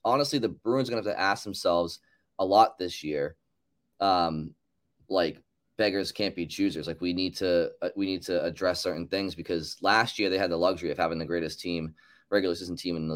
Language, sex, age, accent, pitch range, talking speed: English, male, 20-39, American, 85-105 Hz, 215 wpm